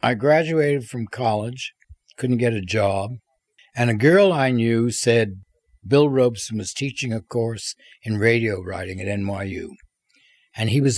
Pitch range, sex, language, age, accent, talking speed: 110-145 Hz, male, English, 60-79, American, 155 wpm